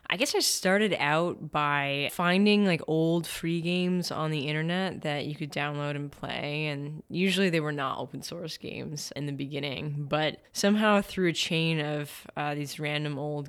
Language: English